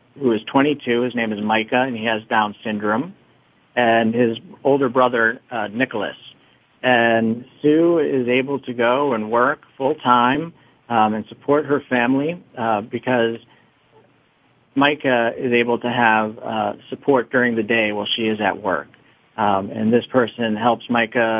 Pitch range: 110-135 Hz